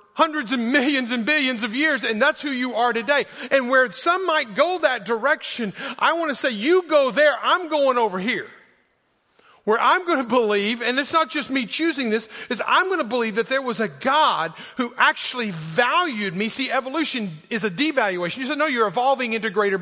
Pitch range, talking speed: 220-290 Hz, 210 wpm